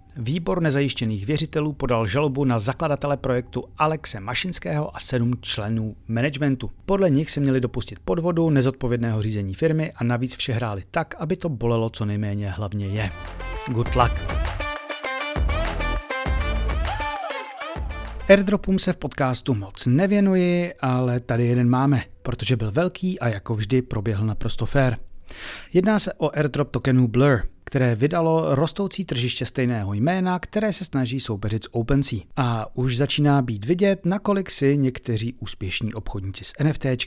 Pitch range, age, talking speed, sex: 115-155 Hz, 30-49, 140 wpm, male